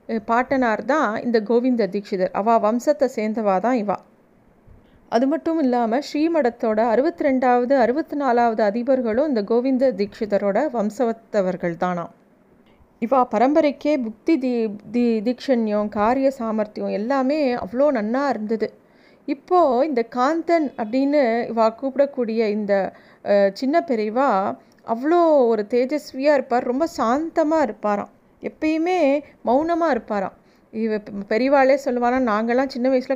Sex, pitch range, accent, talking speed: female, 225-275 Hz, native, 100 wpm